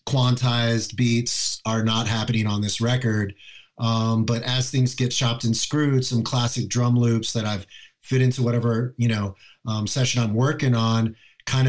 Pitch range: 115-130 Hz